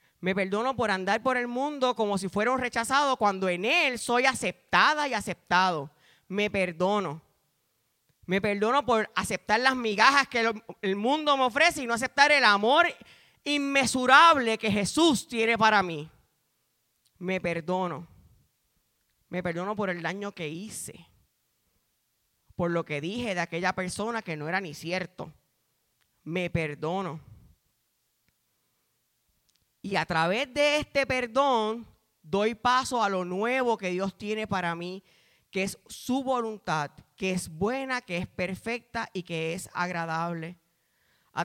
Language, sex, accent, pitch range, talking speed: Spanish, female, American, 180-250 Hz, 140 wpm